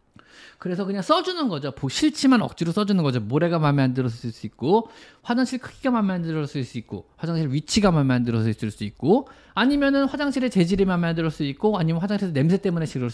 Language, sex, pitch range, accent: Korean, male, 140-225 Hz, native